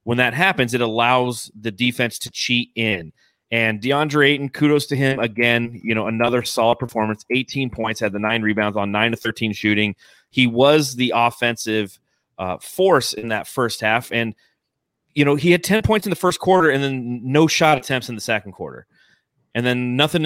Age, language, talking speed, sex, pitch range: 30-49, English, 195 wpm, male, 110-140 Hz